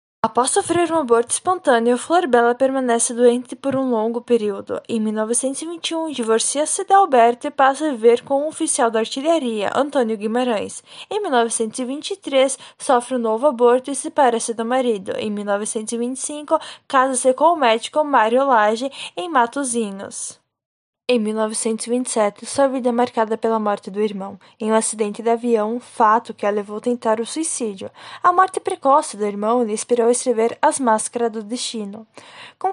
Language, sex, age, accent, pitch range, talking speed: Portuguese, female, 10-29, Brazilian, 225-265 Hz, 160 wpm